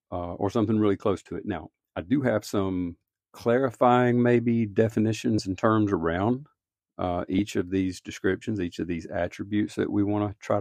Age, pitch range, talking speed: 50-69, 90-105 Hz, 180 wpm